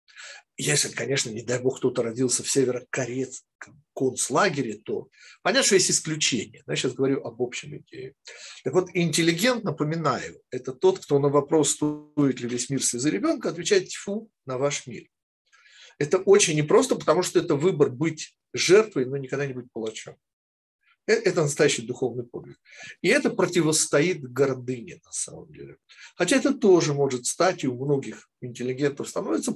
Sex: male